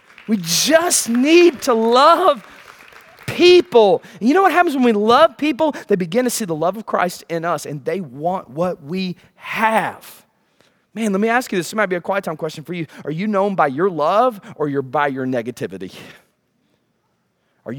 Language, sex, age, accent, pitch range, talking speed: English, male, 30-49, American, 180-245 Hz, 195 wpm